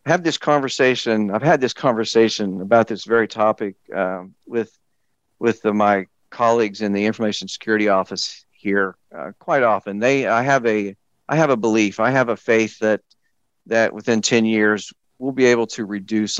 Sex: male